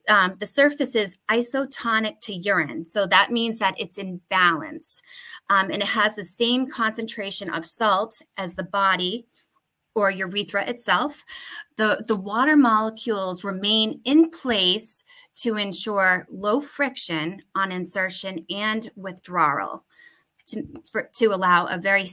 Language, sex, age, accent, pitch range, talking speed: English, female, 20-39, American, 195-240 Hz, 135 wpm